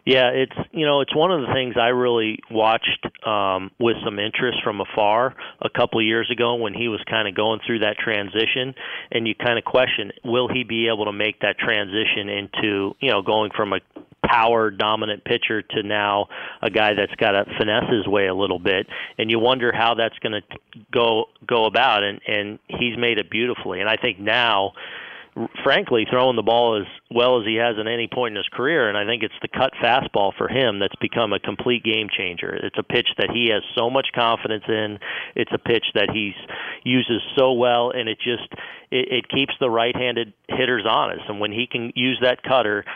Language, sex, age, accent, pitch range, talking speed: English, male, 40-59, American, 105-125 Hz, 210 wpm